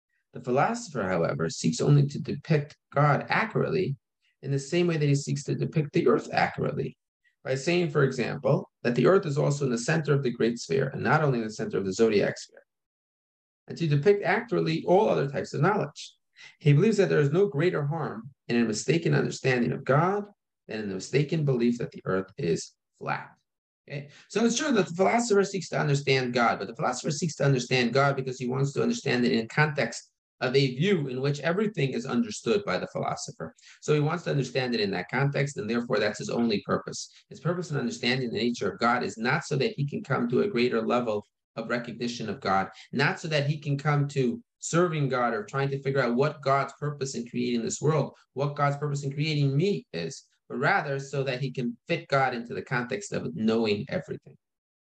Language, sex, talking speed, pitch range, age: English, male, 215 wpm, 120-155 Hz, 30-49